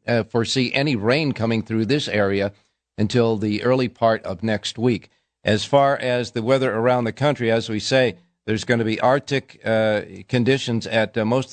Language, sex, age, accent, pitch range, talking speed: English, male, 50-69, American, 105-135 Hz, 185 wpm